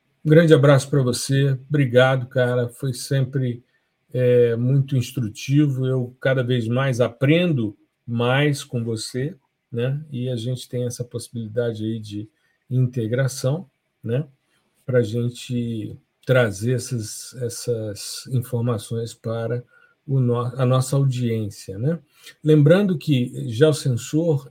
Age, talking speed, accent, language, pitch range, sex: 50-69, 120 wpm, Brazilian, Portuguese, 120-140 Hz, male